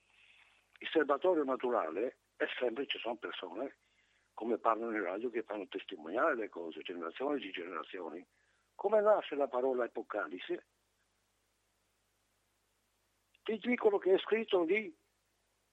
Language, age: Italian, 60-79